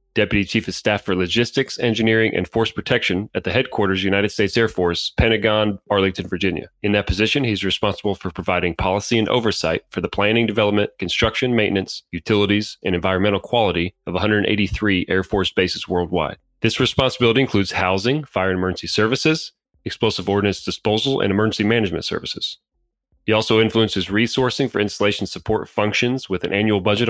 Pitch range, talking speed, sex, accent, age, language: 95-115 Hz, 160 wpm, male, American, 30-49, English